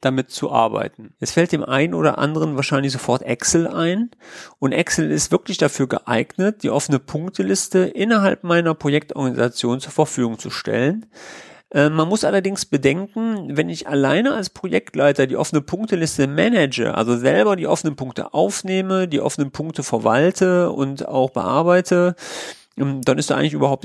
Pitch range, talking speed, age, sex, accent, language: 125-155 Hz, 155 wpm, 40-59, male, German, German